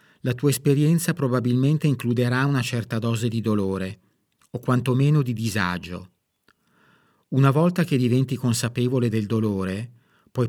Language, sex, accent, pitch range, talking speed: Italian, male, native, 115-135 Hz, 125 wpm